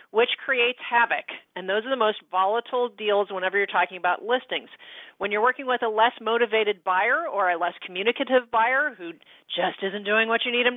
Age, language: 40-59, English